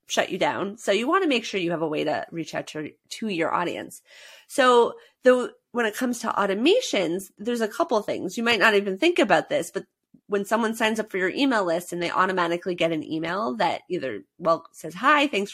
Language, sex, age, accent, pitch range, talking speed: English, female, 30-49, American, 175-245 Hz, 230 wpm